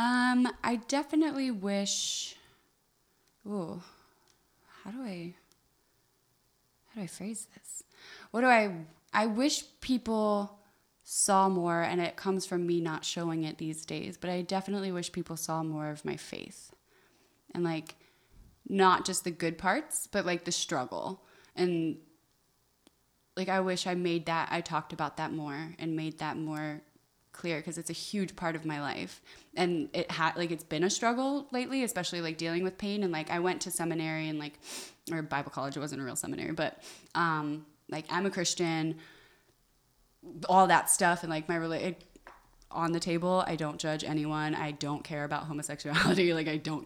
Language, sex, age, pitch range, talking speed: English, female, 20-39, 155-185 Hz, 170 wpm